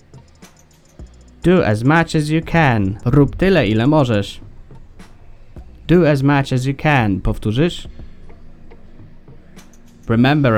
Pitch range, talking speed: 105-135 Hz, 100 wpm